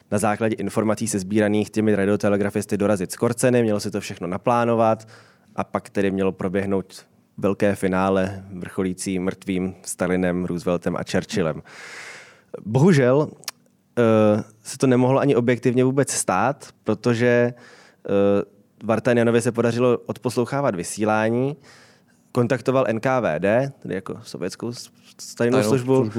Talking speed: 110 wpm